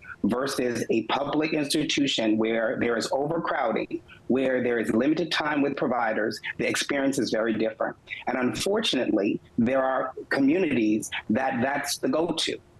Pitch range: 130-190 Hz